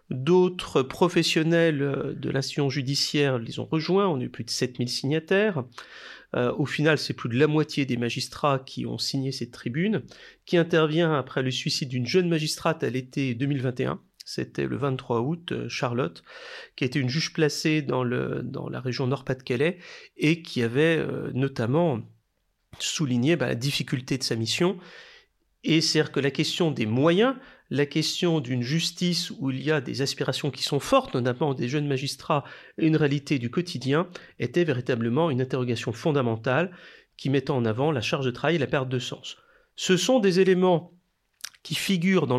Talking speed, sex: 175 wpm, male